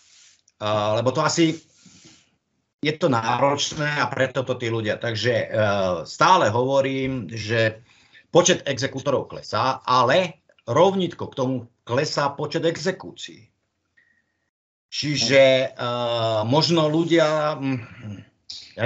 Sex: male